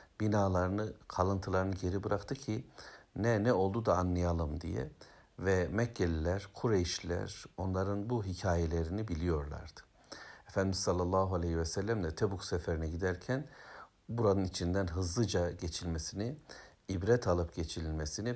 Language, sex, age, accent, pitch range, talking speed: Turkish, male, 60-79, native, 85-100 Hz, 110 wpm